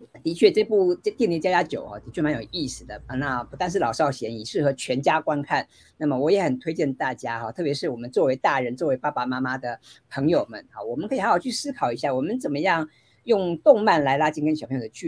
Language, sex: Chinese, female